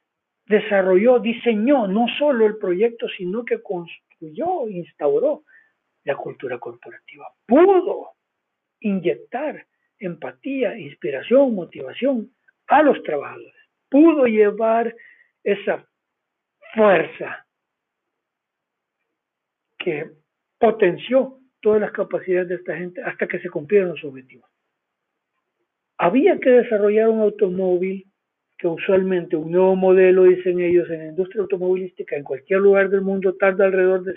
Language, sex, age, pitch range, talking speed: Spanish, male, 60-79, 185-235 Hz, 110 wpm